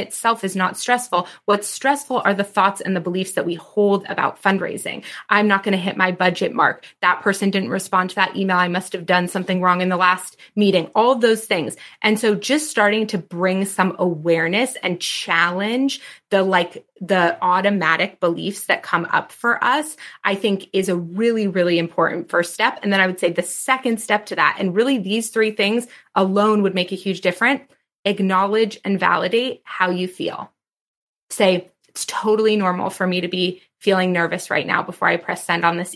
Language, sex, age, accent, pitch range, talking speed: English, female, 20-39, American, 180-220 Hz, 200 wpm